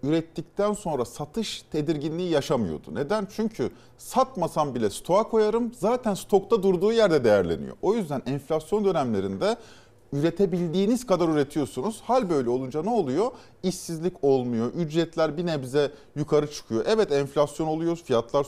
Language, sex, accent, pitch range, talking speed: Turkish, male, native, 140-195 Hz, 125 wpm